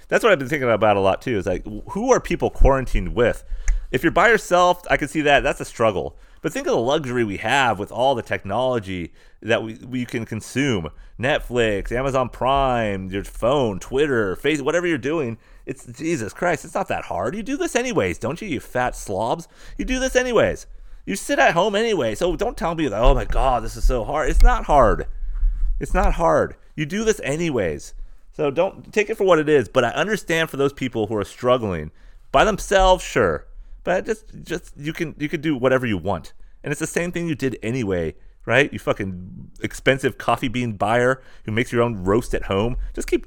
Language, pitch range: English, 105-150 Hz